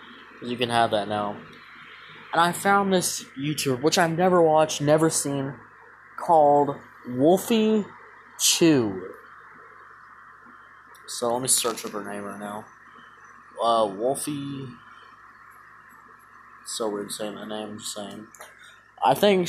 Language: English